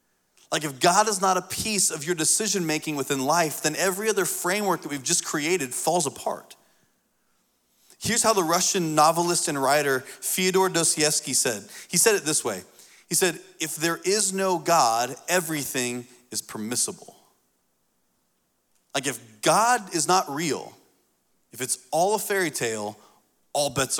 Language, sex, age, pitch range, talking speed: English, male, 30-49, 155-205 Hz, 155 wpm